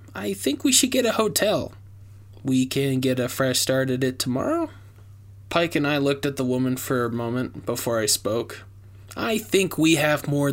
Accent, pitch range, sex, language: American, 105-140 Hz, male, English